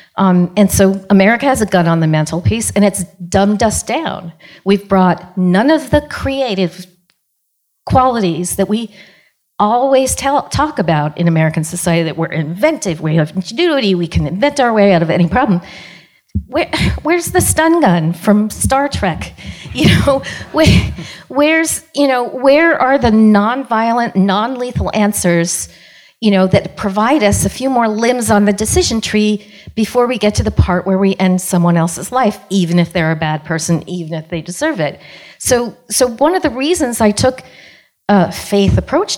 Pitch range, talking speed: 175-245 Hz, 170 wpm